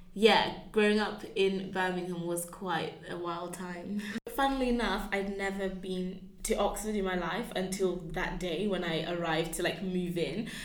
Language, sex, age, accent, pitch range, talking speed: English, female, 20-39, British, 190-220 Hz, 170 wpm